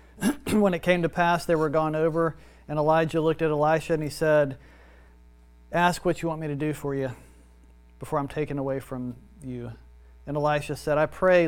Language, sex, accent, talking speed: English, male, American, 195 wpm